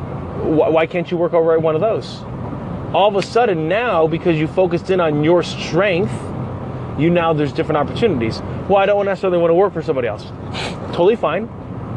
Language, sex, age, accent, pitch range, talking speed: English, male, 30-49, American, 130-175 Hz, 190 wpm